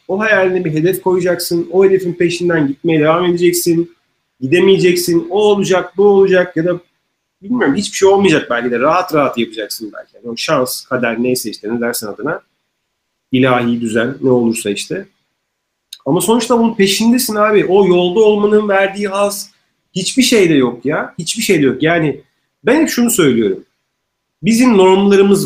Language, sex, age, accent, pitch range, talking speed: Turkish, male, 40-59, native, 140-190 Hz, 155 wpm